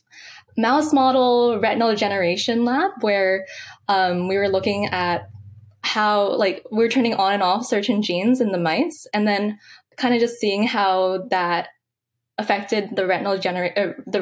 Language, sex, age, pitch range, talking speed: English, female, 10-29, 190-235 Hz, 160 wpm